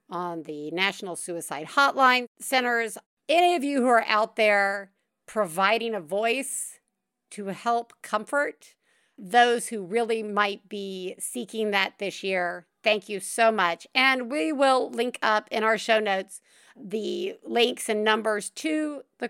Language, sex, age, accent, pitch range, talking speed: English, female, 50-69, American, 200-260 Hz, 145 wpm